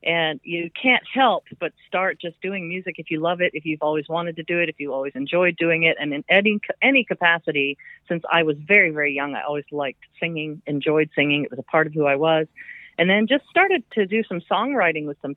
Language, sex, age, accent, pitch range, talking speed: English, female, 40-59, American, 155-200 Hz, 240 wpm